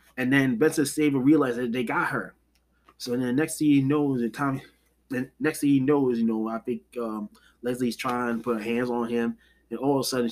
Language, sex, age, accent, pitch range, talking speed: English, male, 20-39, American, 135-195 Hz, 240 wpm